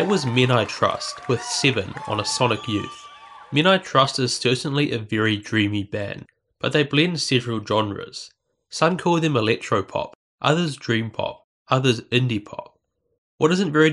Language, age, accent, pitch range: English, 20-39, Australian, 110-145 Hz